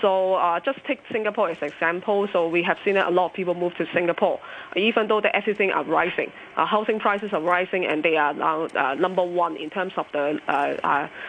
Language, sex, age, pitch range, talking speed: English, female, 20-39, 165-200 Hz, 225 wpm